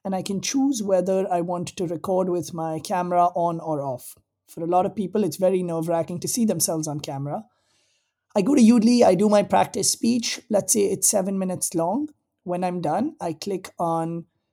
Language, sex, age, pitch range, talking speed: English, male, 30-49, 160-200 Hz, 200 wpm